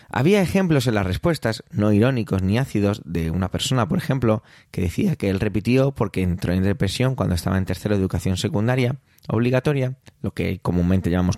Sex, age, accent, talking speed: male, 20-39, Spanish, 185 wpm